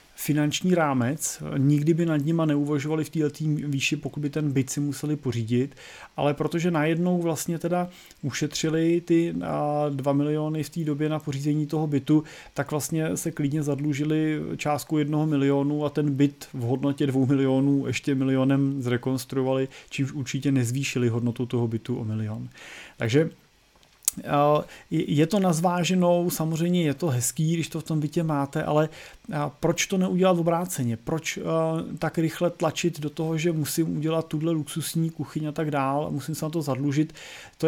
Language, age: Czech, 30-49